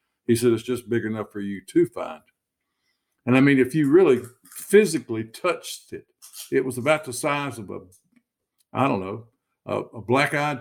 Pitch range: 115-140 Hz